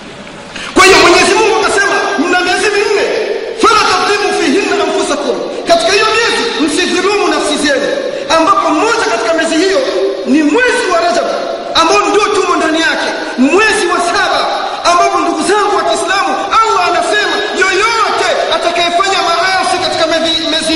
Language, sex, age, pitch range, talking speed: Swahili, male, 40-59, 255-380 Hz, 130 wpm